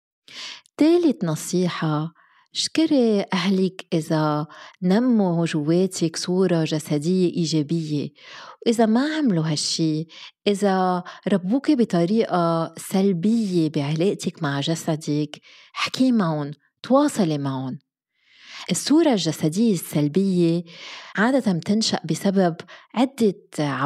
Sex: female